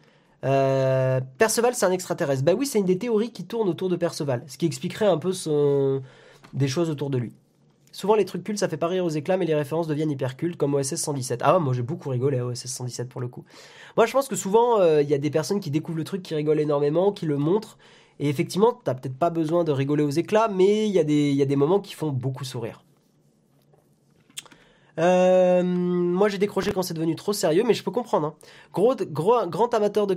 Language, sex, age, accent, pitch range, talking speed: French, male, 20-39, French, 145-190 Hz, 235 wpm